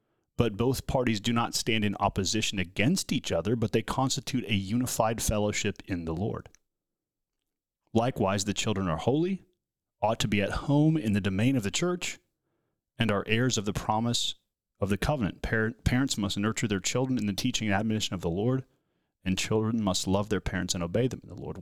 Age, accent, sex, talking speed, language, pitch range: 30-49, American, male, 195 wpm, English, 95-120 Hz